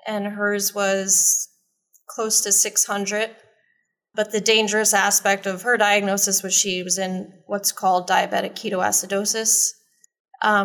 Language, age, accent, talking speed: English, 20-39, American, 125 wpm